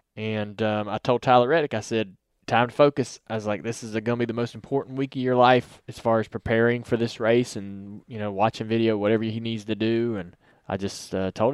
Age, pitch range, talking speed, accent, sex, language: 20-39, 110-125 Hz, 250 wpm, American, male, English